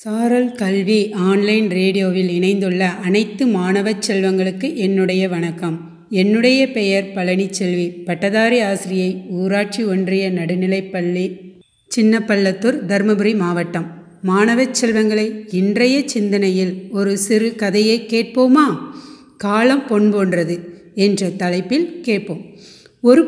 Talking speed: 95 wpm